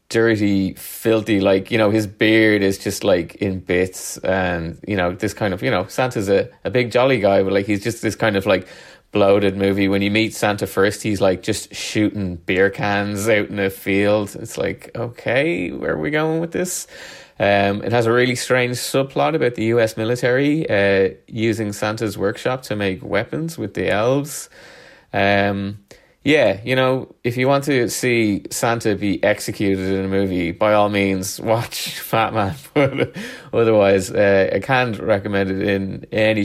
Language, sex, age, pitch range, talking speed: English, male, 20-39, 100-115 Hz, 180 wpm